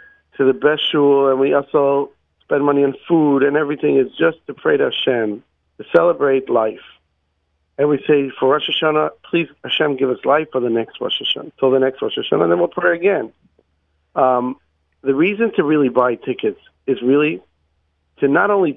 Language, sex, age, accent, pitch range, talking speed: English, male, 50-69, American, 115-150 Hz, 190 wpm